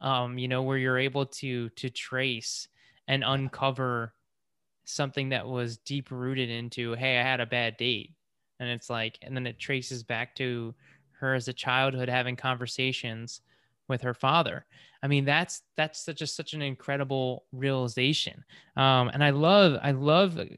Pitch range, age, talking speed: 125-145 Hz, 20-39, 165 wpm